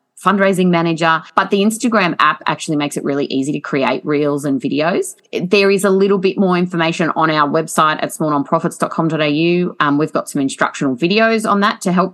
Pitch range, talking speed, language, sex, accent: 150-200 Hz, 185 wpm, English, female, Australian